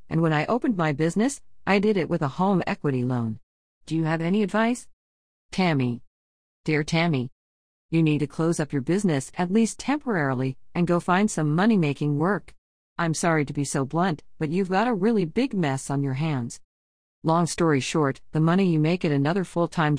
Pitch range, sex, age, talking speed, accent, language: 145-200 Hz, female, 50-69, 200 wpm, American, English